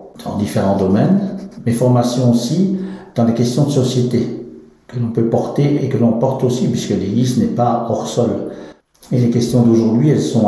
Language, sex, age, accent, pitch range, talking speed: French, male, 60-79, French, 105-125 Hz, 185 wpm